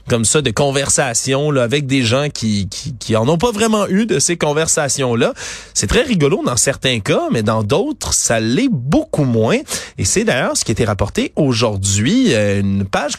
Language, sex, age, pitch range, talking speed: French, male, 30-49, 120-195 Hz, 195 wpm